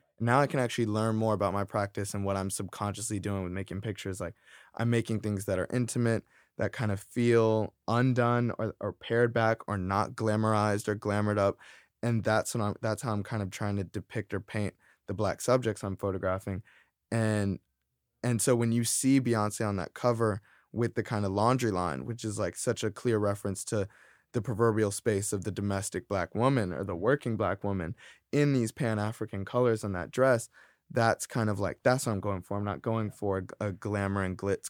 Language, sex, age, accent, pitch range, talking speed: English, male, 20-39, American, 100-115 Hz, 205 wpm